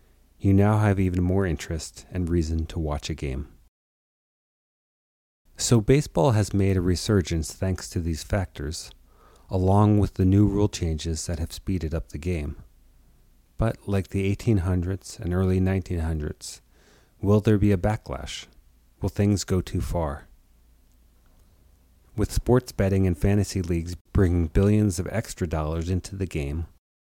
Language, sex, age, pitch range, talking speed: English, male, 40-59, 80-100 Hz, 145 wpm